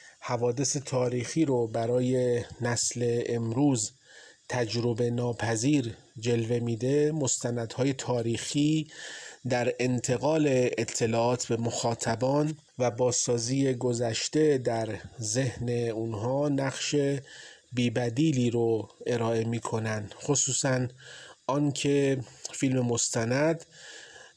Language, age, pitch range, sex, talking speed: Persian, 30-49, 115-135 Hz, male, 80 wpm